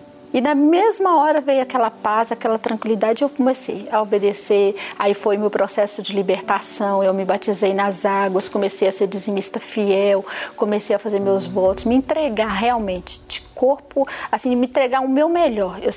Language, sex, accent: Portuguese, female, Brazilian